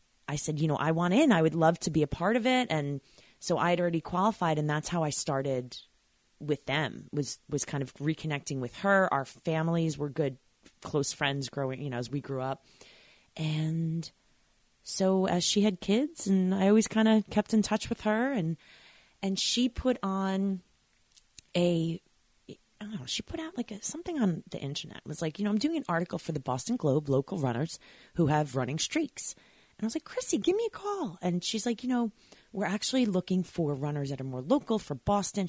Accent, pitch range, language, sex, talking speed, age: American, 140-200 Hz, English, female, 215 wpm, 30-49